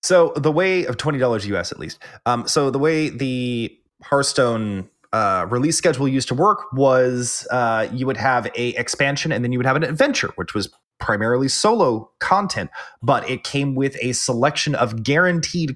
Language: English